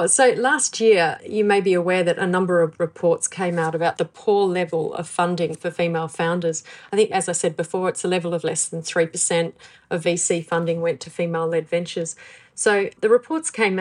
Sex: female